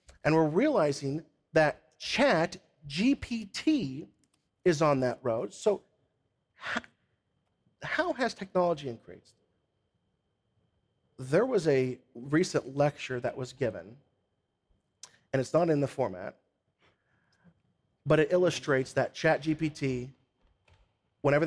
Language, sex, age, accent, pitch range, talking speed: English, male, 40-59, American, 130-160 Hz, 105 wpm